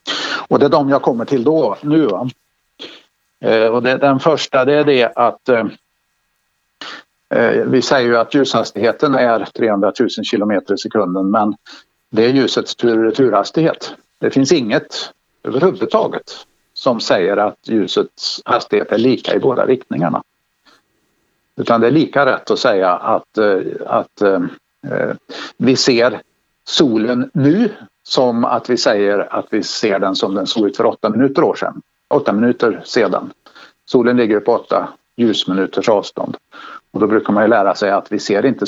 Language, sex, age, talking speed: Swedish, male, 60-79, 150 wpm